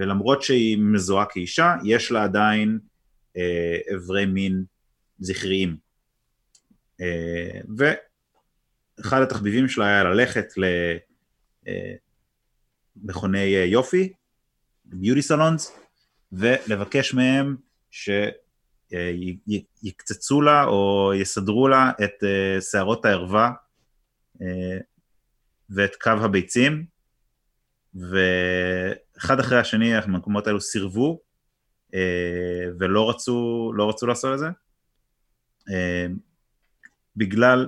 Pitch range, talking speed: 95-120 Hz, 85 wpm